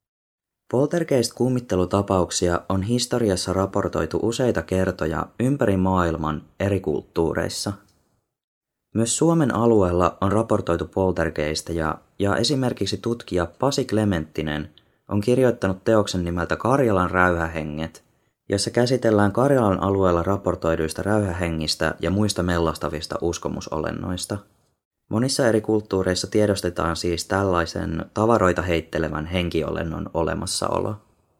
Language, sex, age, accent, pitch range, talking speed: Finnish, male, 20-39, native, 85-110 Hz, 90 wpm